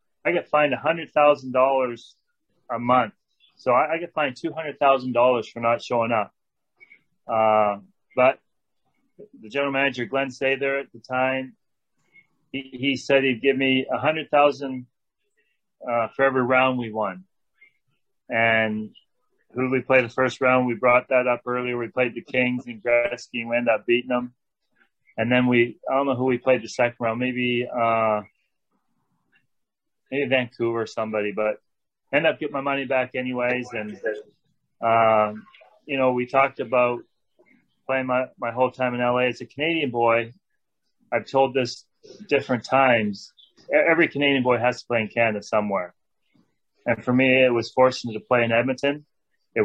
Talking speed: 165 wpm